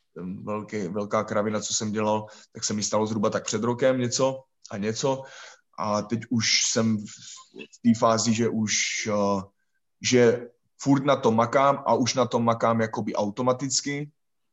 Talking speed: 155 wpm